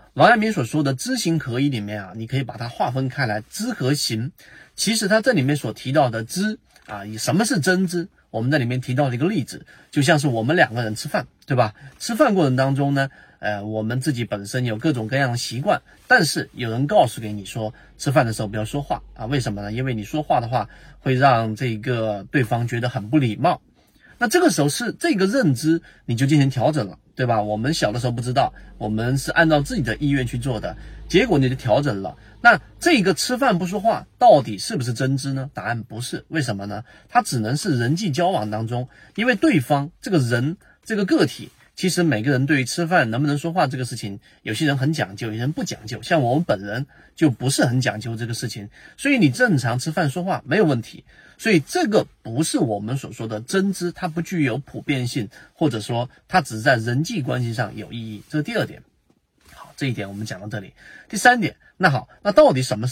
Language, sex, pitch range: Chinese, male, 115-160 Hz